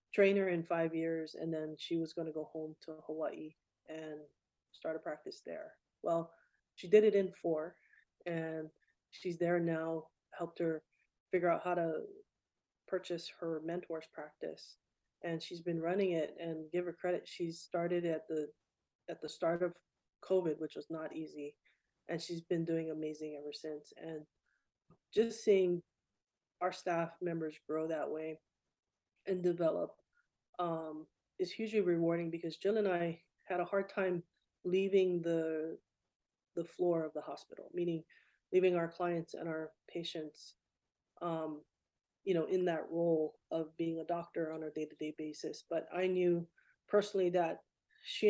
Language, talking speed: English, 155 wpm